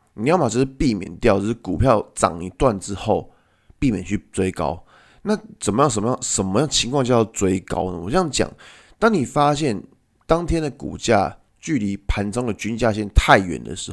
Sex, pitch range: male, 95-135 Hz